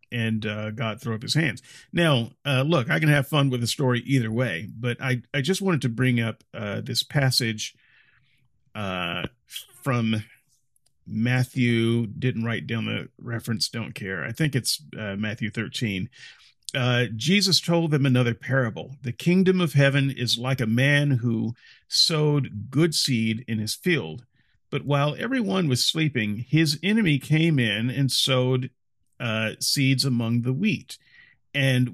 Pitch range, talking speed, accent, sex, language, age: 115-155 Hz, 160 wpm, American, male, English, 40-59